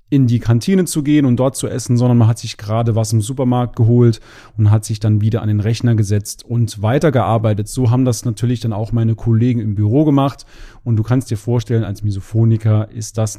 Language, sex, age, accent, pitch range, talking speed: German, male, 40-59, German, 110-130 Hz, 220 wpm